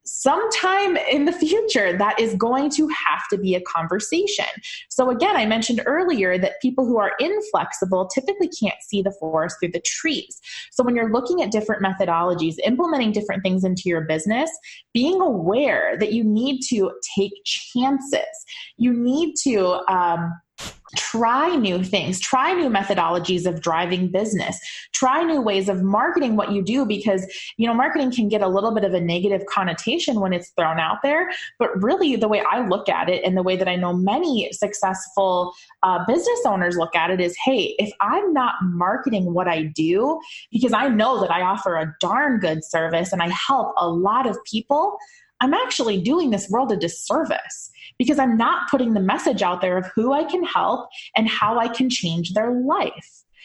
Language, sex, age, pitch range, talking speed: English, female, 20-39, 185-275 Hz, 185 wpm